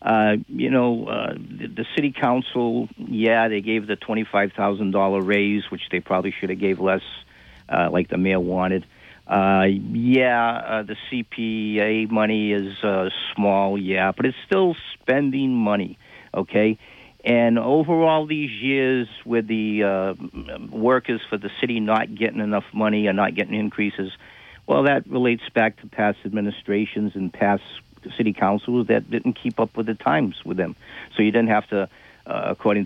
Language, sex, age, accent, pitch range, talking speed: English, male, 50-69, American, 100-120 Hz, 165 wpm